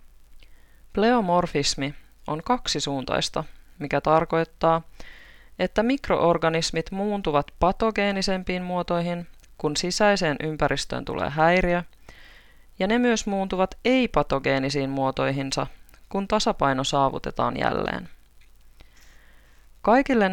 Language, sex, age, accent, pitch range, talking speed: Finnish, female, 20-39, native, 145-180 Hz, 80 wpm